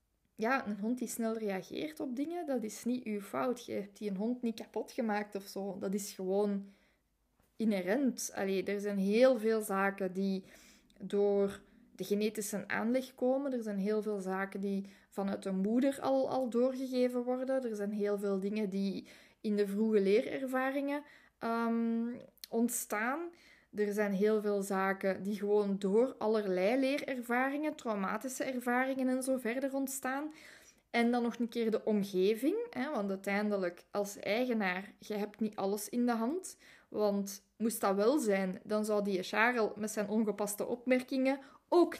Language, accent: Dutch, Dutch